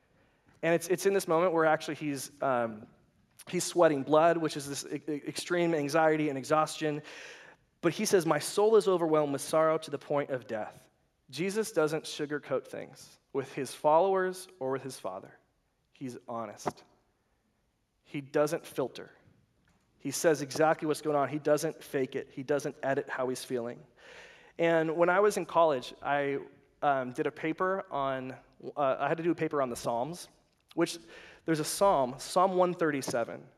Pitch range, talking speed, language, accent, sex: 140-175 Hz, 170 wpm, English, American, male